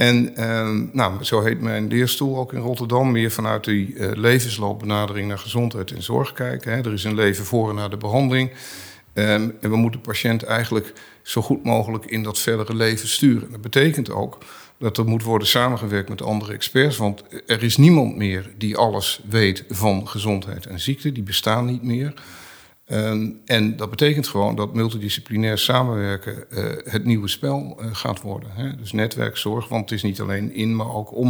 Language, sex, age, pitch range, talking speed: Dutch, male, 50-69, 105-125 Hz, 180 wpm